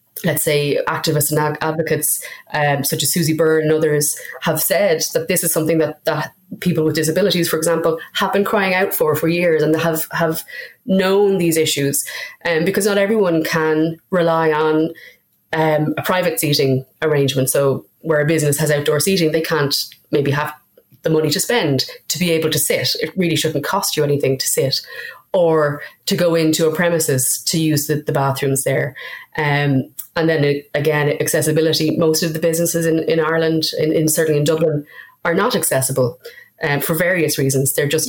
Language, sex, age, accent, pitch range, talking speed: English, female, 30-49, Irish, 145-165 Hz, 185 wpm